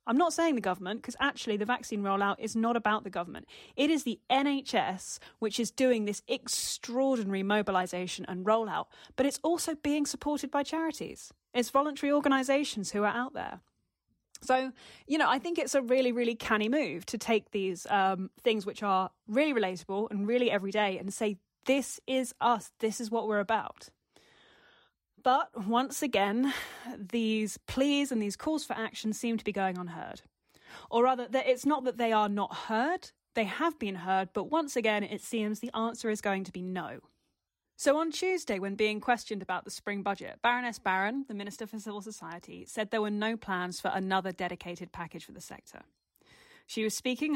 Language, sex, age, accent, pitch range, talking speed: English, female, 20-39, British, 200-265 Hz, 185 wpm